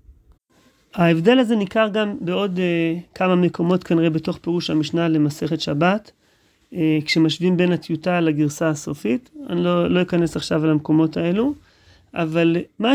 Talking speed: 140 wpm